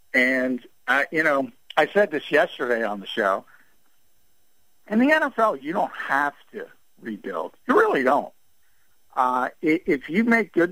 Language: English